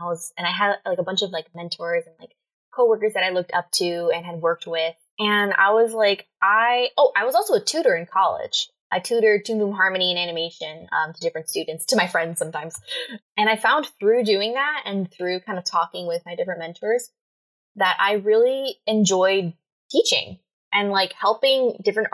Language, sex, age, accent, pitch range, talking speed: English, female, 10-29, American, 170-225 Hz, 205 wpm